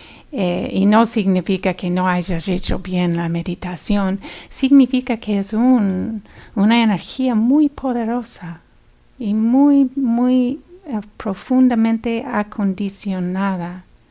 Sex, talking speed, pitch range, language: female, 105 wpm, 190-230 Hz, English